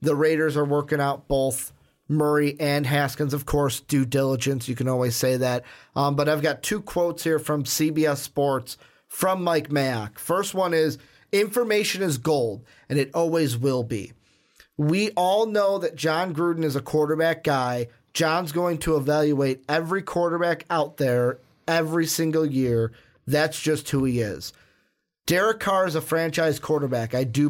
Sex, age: male, 30-49